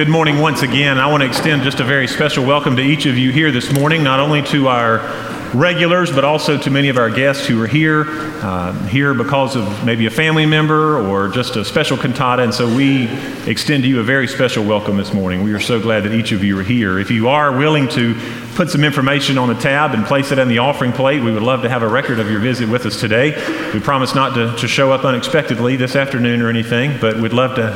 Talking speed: 255 wpm